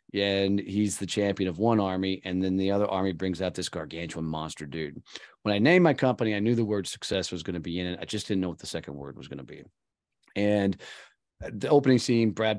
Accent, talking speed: American, 245 wpm